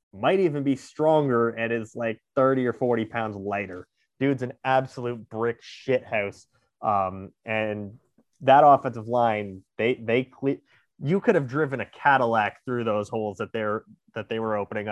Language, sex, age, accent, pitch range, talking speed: English, male, 30-49, American, 115-155 Hz, 160 wpm